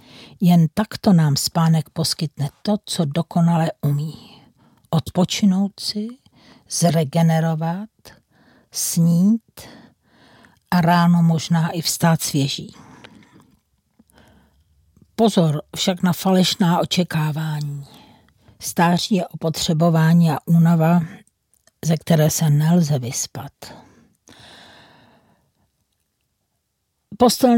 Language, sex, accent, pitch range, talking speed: Czech, female, native, 160-190 Hz, 75 wpm